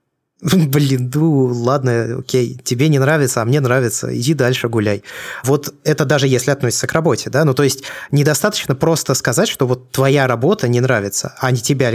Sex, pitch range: male, 120-145 Hz